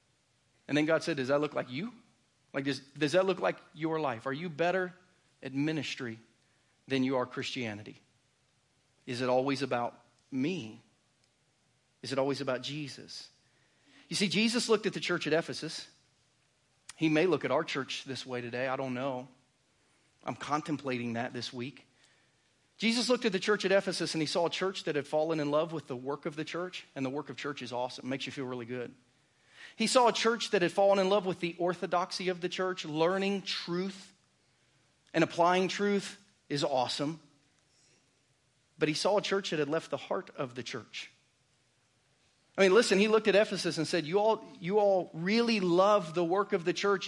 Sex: male